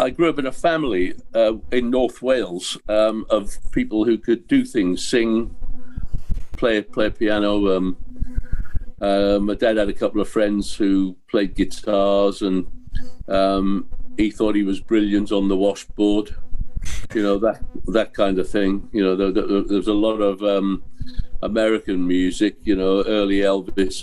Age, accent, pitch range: 50-69, British, 95-120 Hz